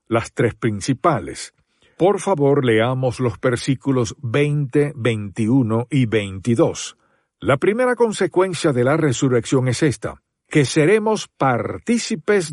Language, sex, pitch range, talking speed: Spanish, male, 130-185 Hz, 110 wpm